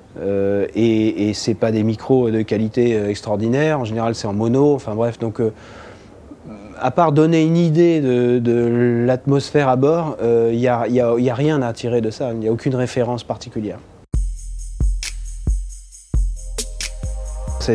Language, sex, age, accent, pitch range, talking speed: French, male, 30-49, French, 110-130 Hz, 160 wpm